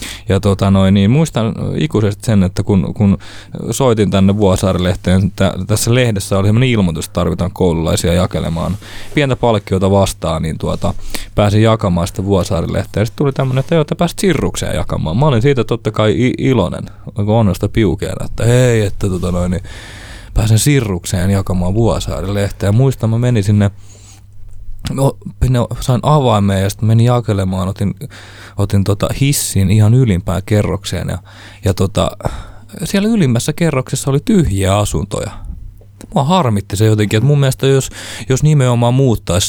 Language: Finnish